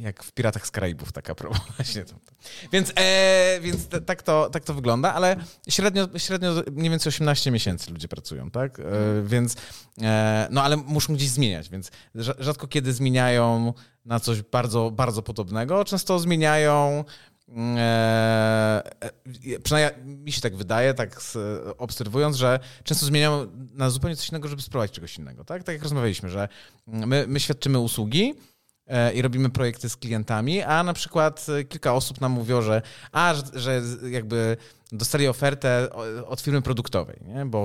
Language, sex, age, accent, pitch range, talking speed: Polish, male, 30-49, native, 110-150 Hz, 150 wpm